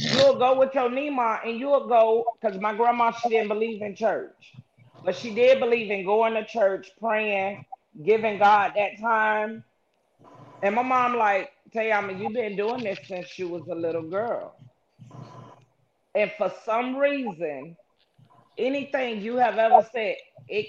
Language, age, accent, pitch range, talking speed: English, 30-49, American, 175-230 Hz, 160 wpm